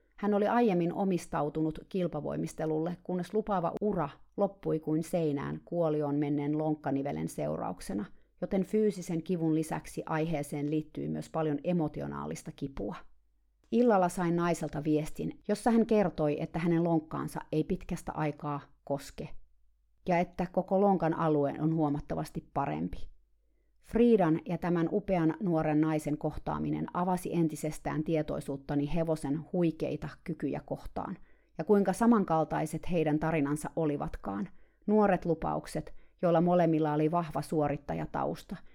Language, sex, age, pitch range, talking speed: Finnish, female, 30-49, 150-175 Hz, 115 wpm